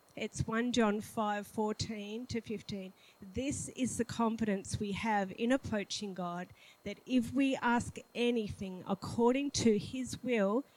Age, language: 40-59, English